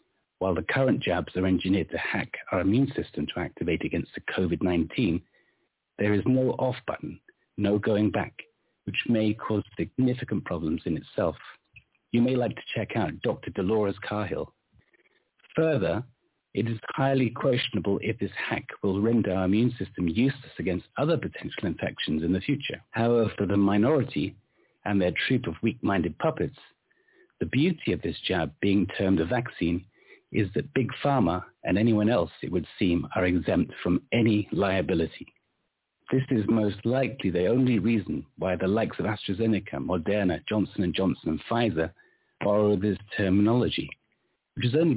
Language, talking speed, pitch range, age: English, 160 wpm, 95-120 Hz, 60-79